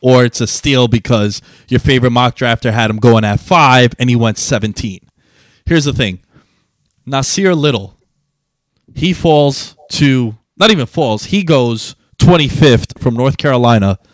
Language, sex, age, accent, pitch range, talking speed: English, male, 20-39, American, 110-145 Hz, 150 wpm